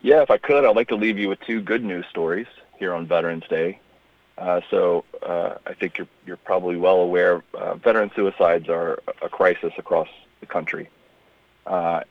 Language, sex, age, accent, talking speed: English, male, 40-59, American, 190 wpm